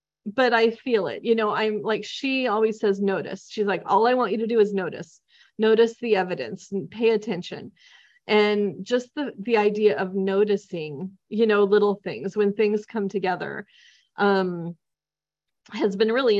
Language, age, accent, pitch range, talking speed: English, 30-49, American, 190-220 Hz, 170 wpm